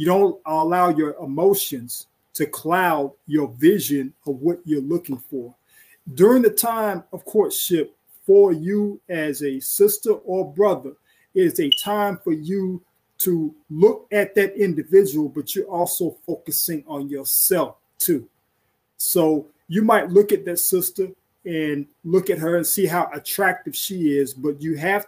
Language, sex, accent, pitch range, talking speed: English, male, American, 145-190 Hz, 155 wpm